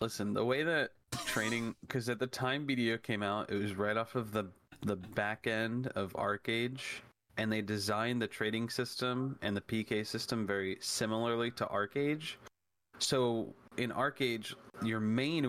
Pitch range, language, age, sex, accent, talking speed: 100-120 Hz, English, 30-49, male, American, 165 wpm